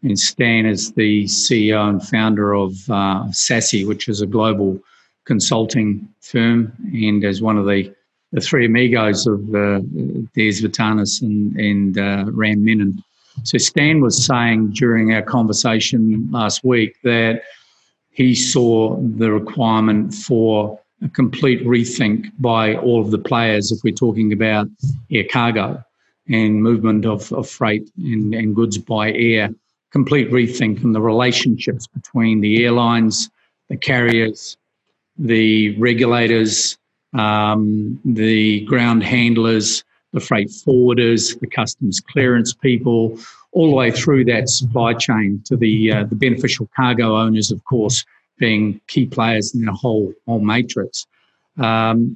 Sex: male